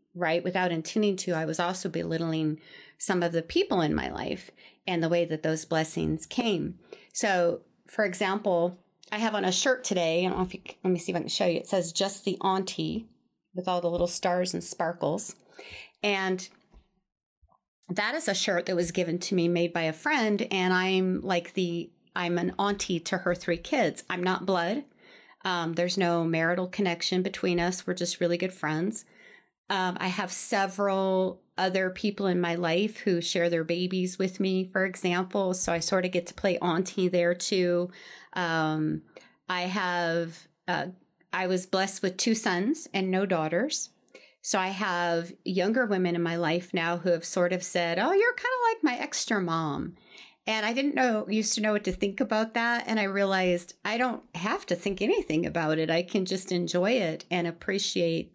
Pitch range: 175-195 Hz